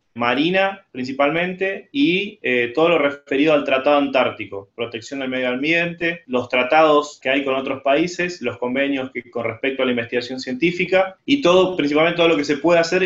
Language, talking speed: English, 180 wpm